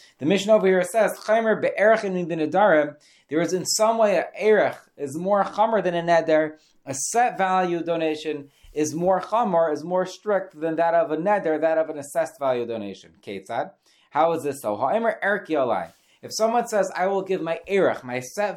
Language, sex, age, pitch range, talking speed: English, male, 30-49, 150-195 Hz, 180 wpm